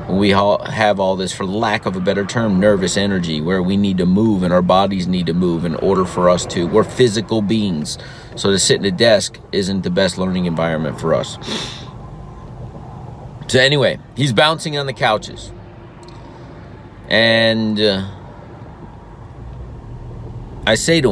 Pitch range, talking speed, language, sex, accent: 95-130 Hz, 160 wpm, English, male, American